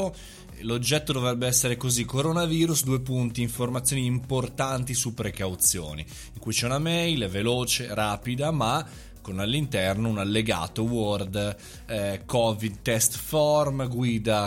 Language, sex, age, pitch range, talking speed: Italian, male, 20-39, 100-125 Hz, 120 wpm